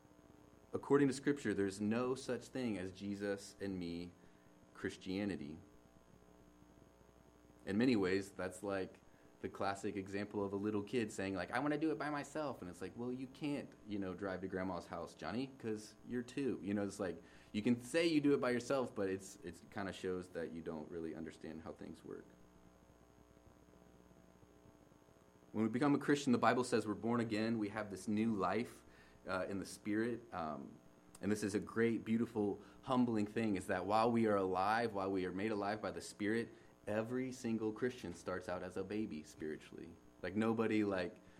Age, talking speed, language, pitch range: 30-49, 190 wpm, English, 80-105 Hz